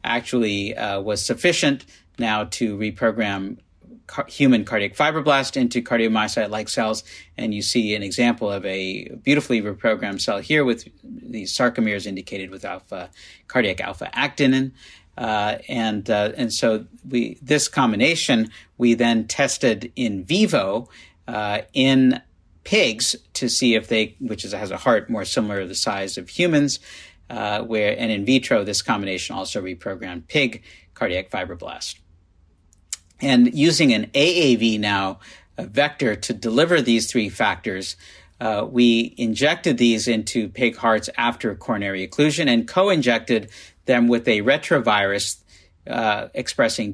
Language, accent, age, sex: English, American, 50-69, male